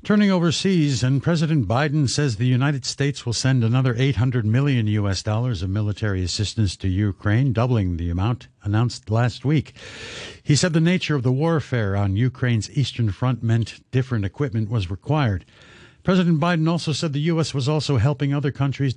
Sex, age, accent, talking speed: male, 60-79, American, 170 wpm